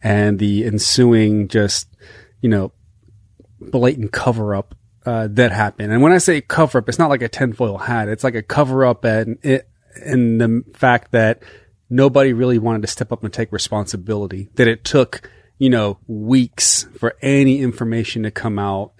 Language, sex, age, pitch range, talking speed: English, male, 30-49, 110-130 Hz, 175 wpm